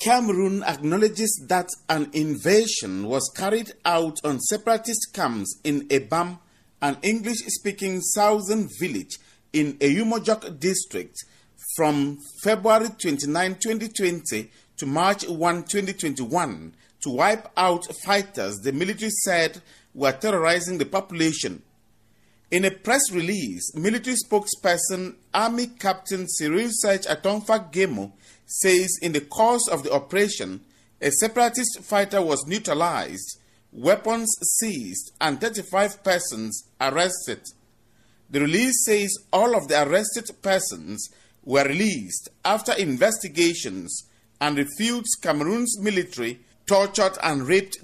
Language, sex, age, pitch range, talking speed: English, male, 40-59, 145-210 Hz, 110 wpm